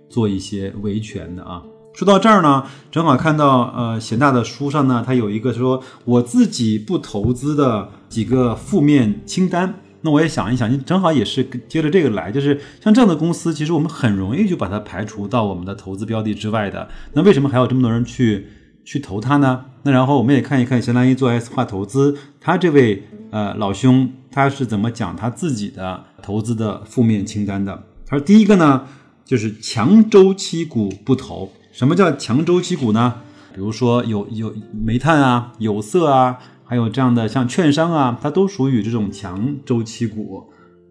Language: Chinese